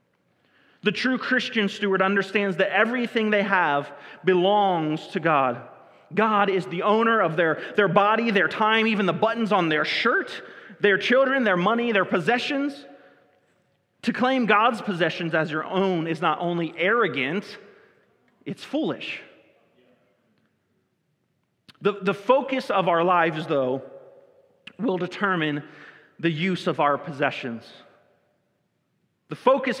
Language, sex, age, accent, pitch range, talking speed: English, male, 40-59, American, 160-210 Hz, 125 wpm